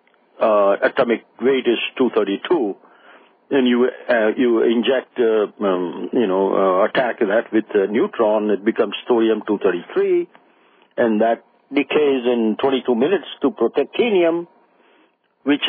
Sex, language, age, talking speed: male, English, 60-79, 120 wpm